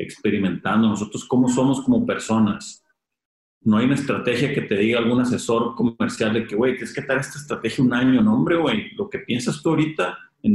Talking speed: 200 wpm